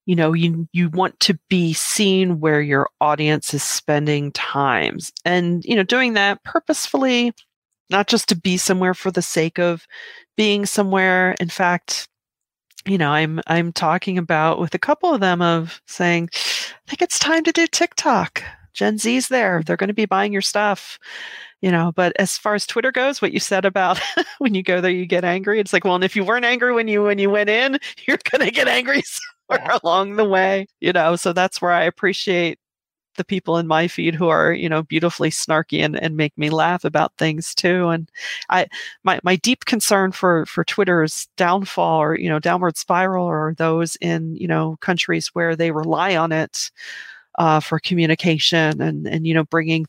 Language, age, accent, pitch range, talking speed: English, 40-59, American, 160-200 Hz, 195 wpm